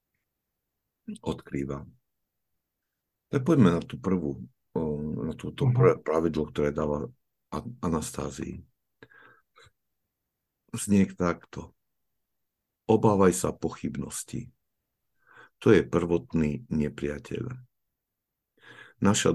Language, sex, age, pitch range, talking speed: Slovak, male, 50-69, 75-95 Hz, 60 wpm